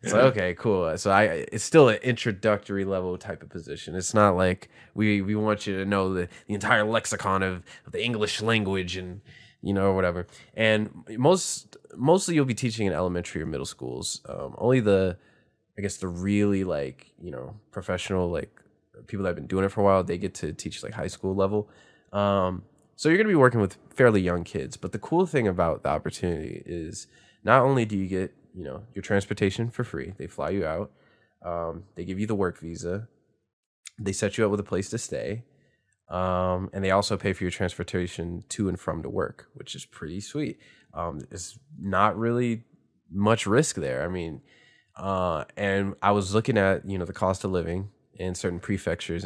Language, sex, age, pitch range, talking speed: English, male, 20-39, 90-110 Hz, 205 wpm